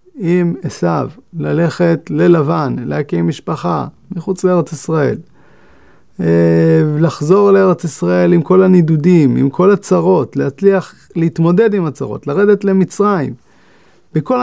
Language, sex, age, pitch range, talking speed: English, male, 30-49, 140-190 Hz, 105 wpm